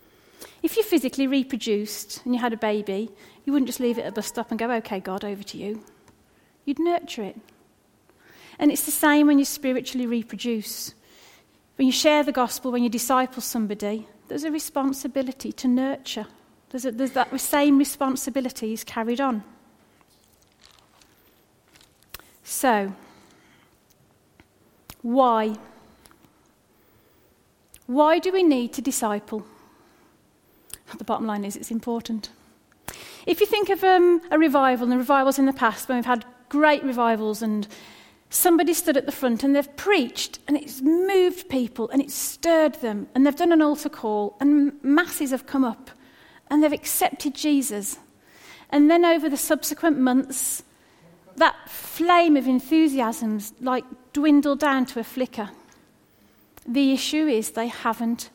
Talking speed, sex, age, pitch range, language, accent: 150 wpm, female, 40-59, 230-295 Hz, English, British